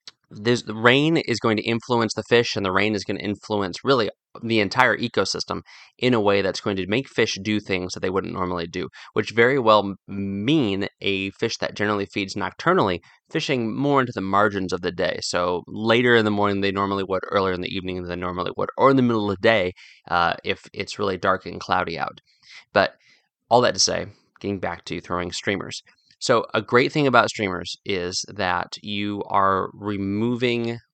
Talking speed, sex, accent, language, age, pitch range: 205 wpm, male, American, English, 20-39, 95-115 Hz